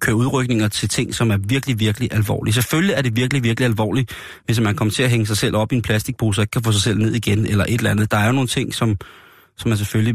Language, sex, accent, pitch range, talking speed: Danish, male, native, 105-125 Hz, 285 wpm